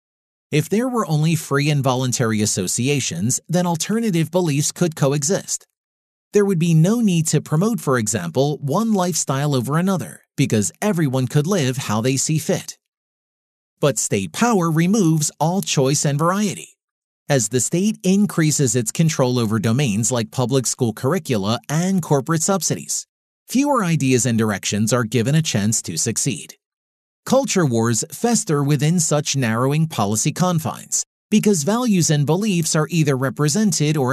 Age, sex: 30-49, male